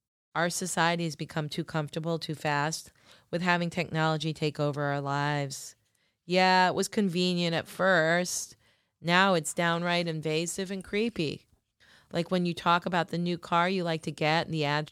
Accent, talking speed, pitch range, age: American, 170 wpm, 150-175 Hz, 40-59